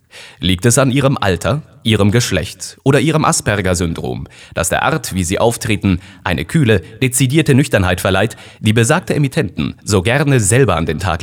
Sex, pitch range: male, 95-135 Hz